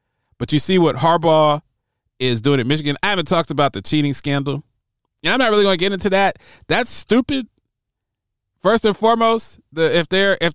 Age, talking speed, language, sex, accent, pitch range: 30-49, 195 wpm, English, male, American, 120-170 Hz